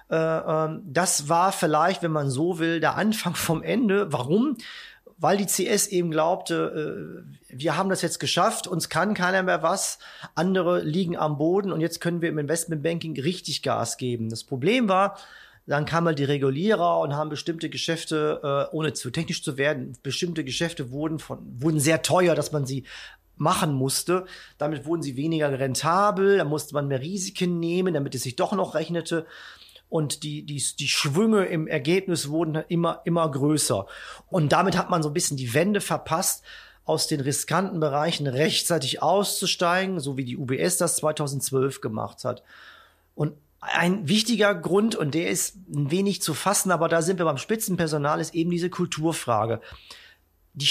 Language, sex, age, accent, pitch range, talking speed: German, male, 40-59, German, 150-180 Hz, 170 wpm